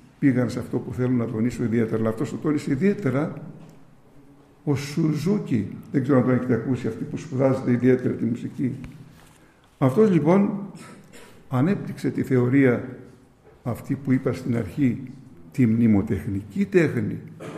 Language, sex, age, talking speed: Greek, male, 60-79, 135 wpm